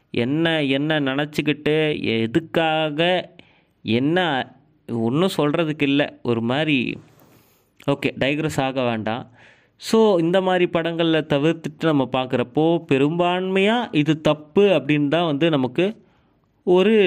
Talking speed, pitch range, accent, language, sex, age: 95 wpm, 135-175 Hz, native, Tamil, male, 30-49